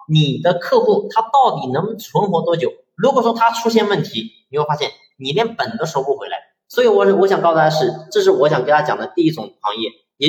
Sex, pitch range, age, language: male, 160-240 Hz, 30-49, Chinese